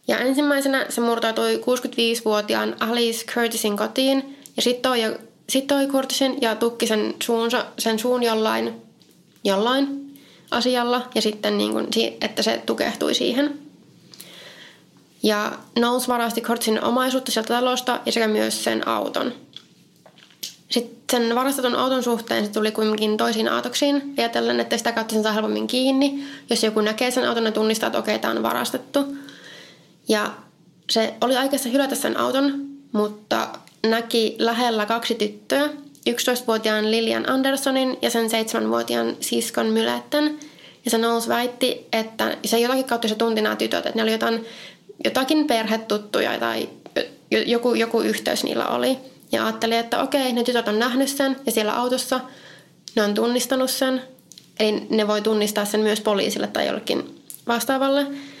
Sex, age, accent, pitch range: female, 20-39, native, 215-260 Hz